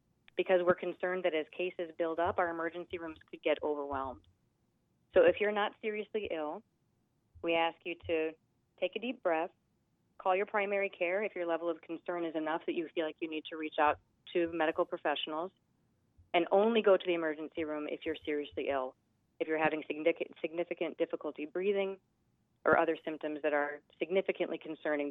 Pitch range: 155-180 Hz